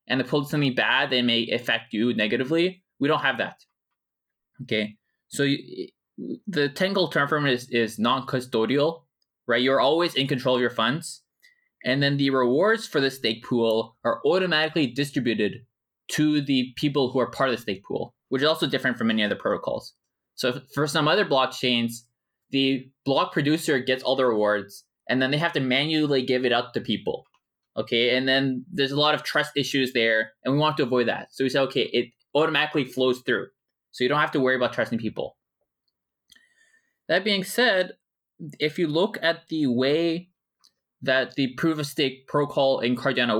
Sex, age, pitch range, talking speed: male, 20-39, 125-155 Hz, 190 wpm